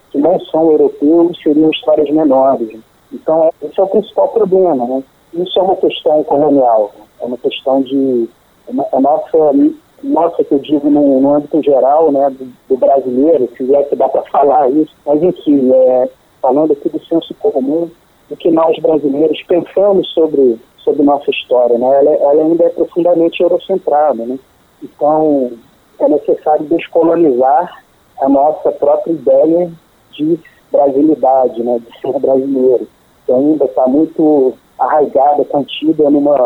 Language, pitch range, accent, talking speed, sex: Portuguese, 130-165 Hz, Brazilian, 150 wpm, male